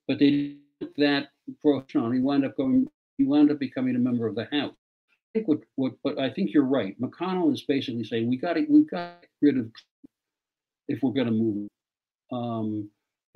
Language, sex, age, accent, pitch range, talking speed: English, male, 60-79, American, 115-155 Hz, 195 wpm